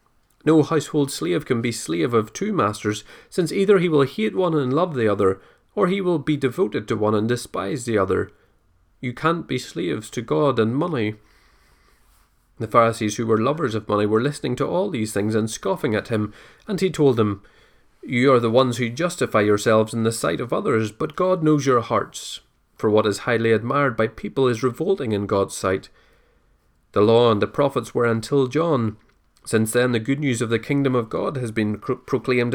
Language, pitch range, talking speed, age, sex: English, 110-145 Hz, 200 wpm, 30-49, male